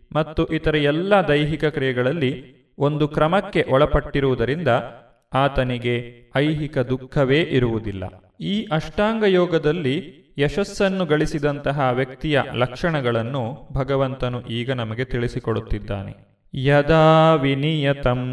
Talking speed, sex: 80 wpm, male